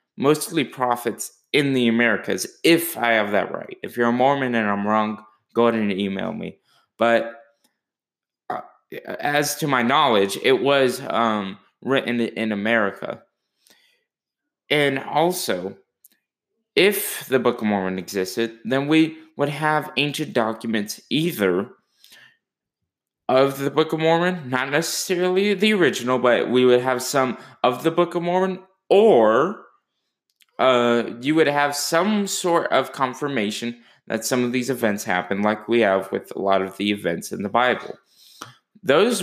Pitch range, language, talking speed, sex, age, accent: 110-145 Hz, English, 145 wpm, male, 20-39, American